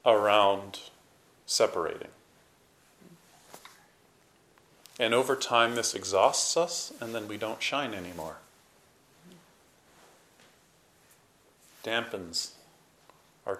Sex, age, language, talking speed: male, 40-59, English, 70 wpm